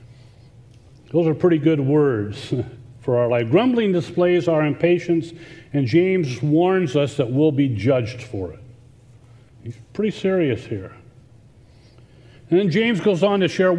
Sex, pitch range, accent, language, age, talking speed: male, 125-170 Hz, American, English, 40-59, 145 wpm